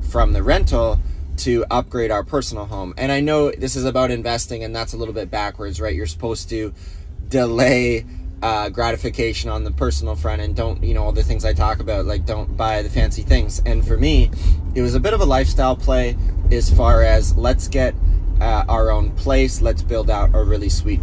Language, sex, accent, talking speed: English, male, American, 210 wpm